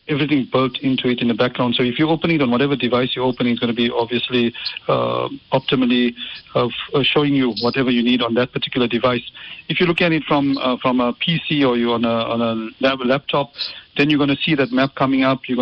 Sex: male